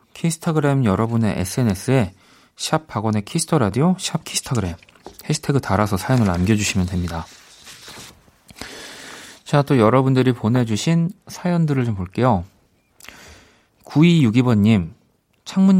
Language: Korean